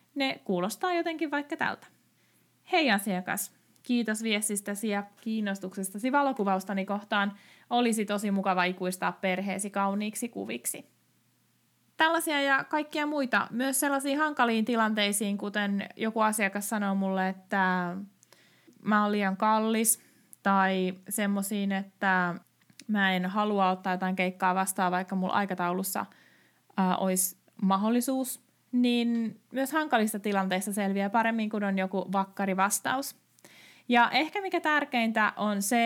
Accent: native